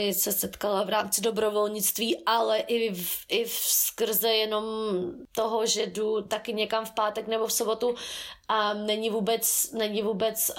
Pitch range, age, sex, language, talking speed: 185-220 Hz, 20-39, female, Slovak, 140 wpm